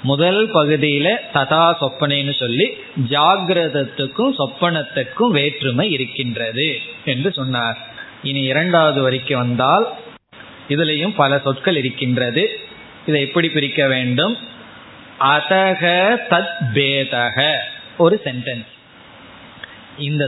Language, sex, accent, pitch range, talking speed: Tamil, male, native, 135-165 Hz, 45 wpm